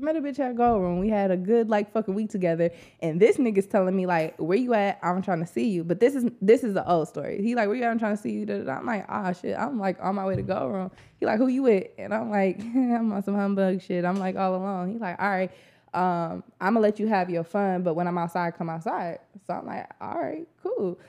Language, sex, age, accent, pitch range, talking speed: English, female, 20-39, American, 185-250 Hz, 280 wpm